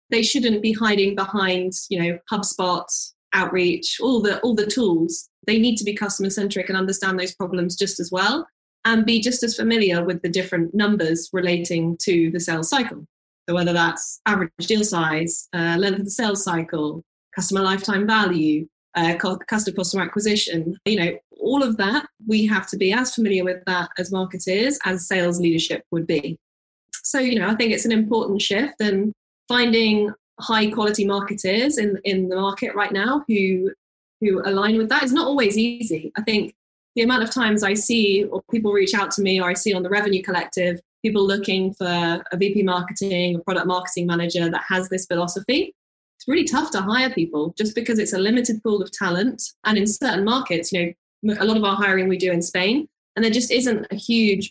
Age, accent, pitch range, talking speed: 10-29, British, 180-220 Hz, 195 wpm